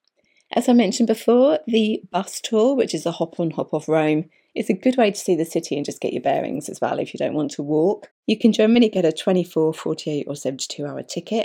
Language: English